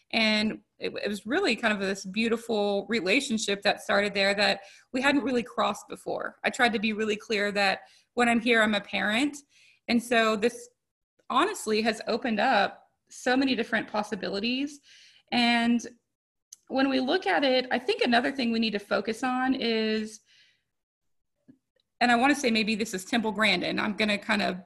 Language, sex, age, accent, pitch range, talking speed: English, female, 20-39, American, 210-250 Hz, 180 wpm